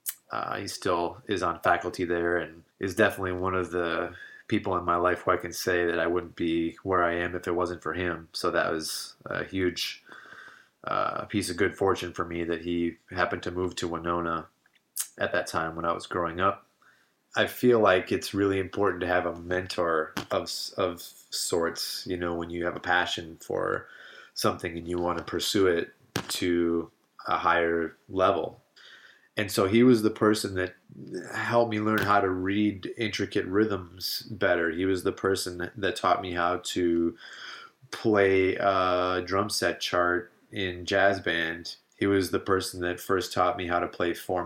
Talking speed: 185 wpm